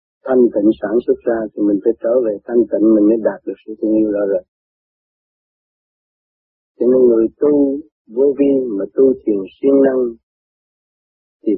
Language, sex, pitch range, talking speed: Vietnamese, male, 110-140 Hz, 170 wpm